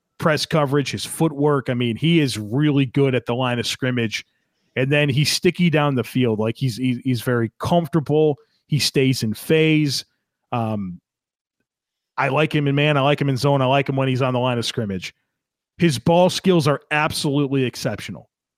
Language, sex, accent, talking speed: English, male, American, 185 wpm